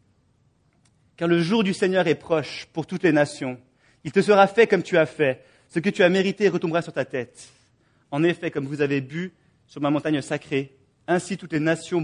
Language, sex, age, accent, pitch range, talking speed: English, male, 30-49, French, 130-175 Hz, 210 wpm